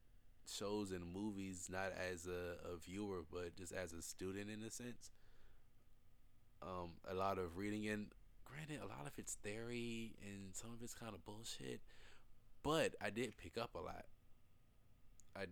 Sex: male